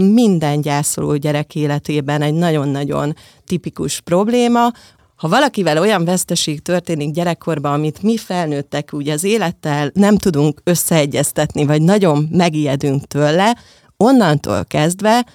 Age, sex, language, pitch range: 30-49, female, Hungarian, 140-180 Hz